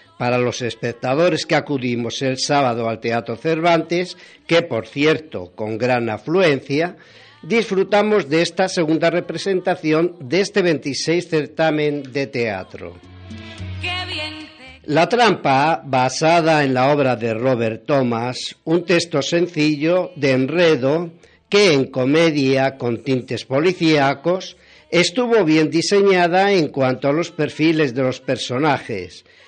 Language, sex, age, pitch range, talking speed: Spanish, male, 50-69, 130-170 Hz, 120 wpm